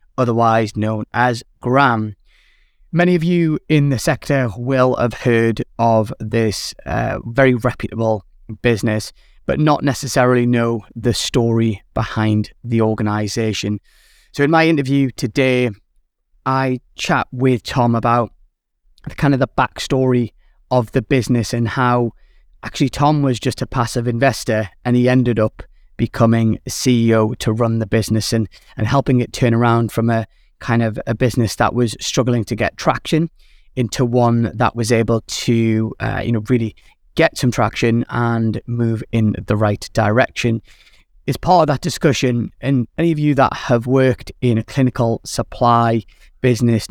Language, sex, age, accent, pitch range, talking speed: English, male, 20-39, British, 115-130 Hz, 155 wpm